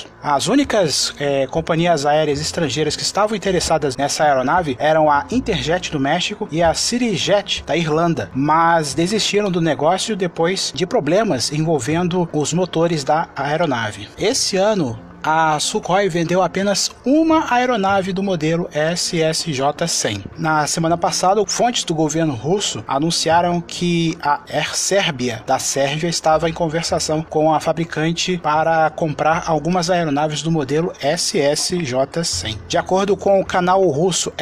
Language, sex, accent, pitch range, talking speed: Portuguese, male, Brazilian, 150-180 Hz, 135 wpm